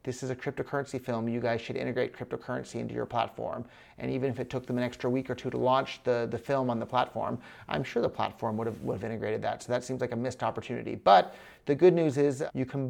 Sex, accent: male, American